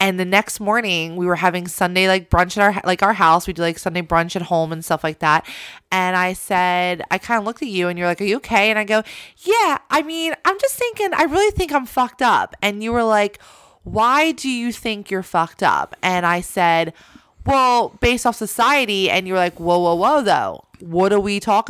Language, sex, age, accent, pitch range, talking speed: English, female, 20-39, American, 170-220 Hz, 235 wpm